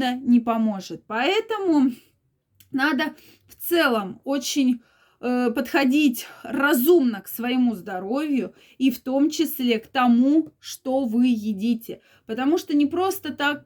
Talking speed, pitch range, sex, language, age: 115 wpm, 230-285 Hz, female, Russian, 20-39